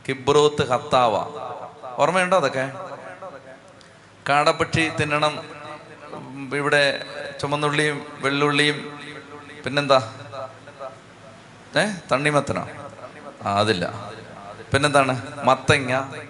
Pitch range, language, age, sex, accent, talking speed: 135-155 Hz, Malayalam, 30-49, male, native, 60 wpm